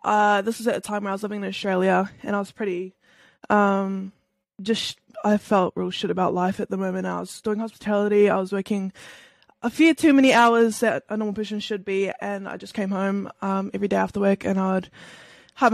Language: English